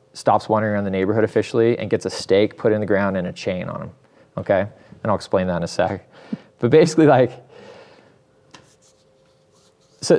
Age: 20-39